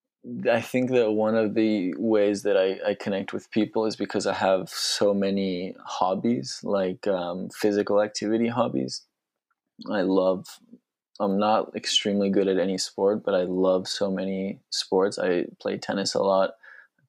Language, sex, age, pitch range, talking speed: English, male, 20-39, 95-105 Hz, 160 wpm